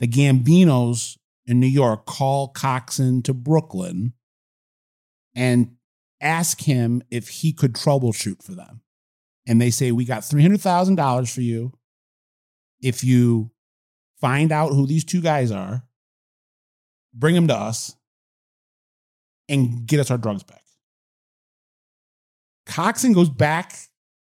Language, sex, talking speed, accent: English, male, 120 wpm, American